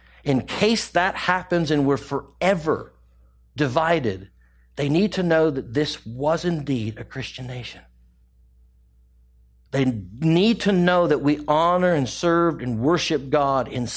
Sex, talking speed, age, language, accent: male, 140 wpm, 60-79, English, American